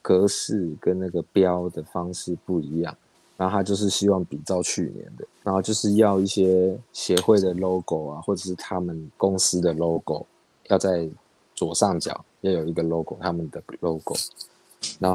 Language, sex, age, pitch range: Chinese, male, 20-39, 85-105 Hz